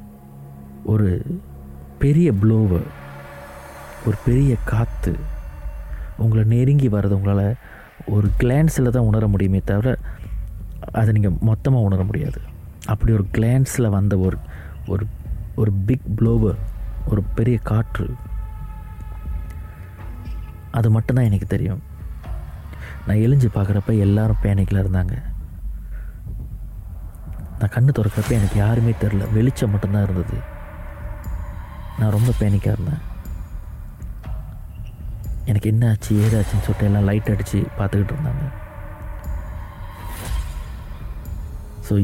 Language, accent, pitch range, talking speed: Tamil, native, 85-115 Hz, 95 wpm